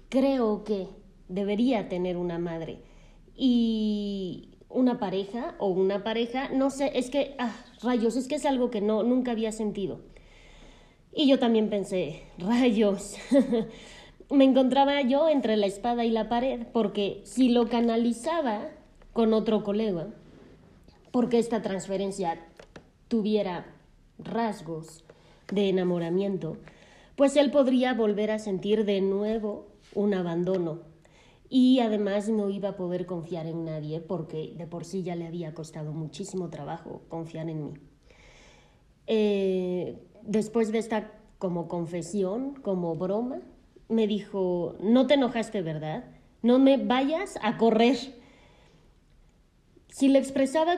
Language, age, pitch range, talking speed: Spanish, 20-39, 180-240 Hz, 130 wpm